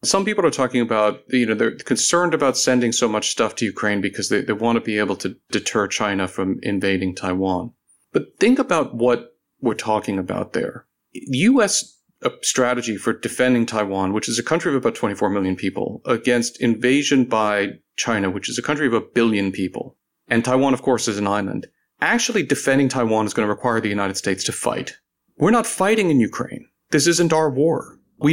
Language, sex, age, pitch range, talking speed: English, male, 40-59, 105-135 Hz, 195 wpm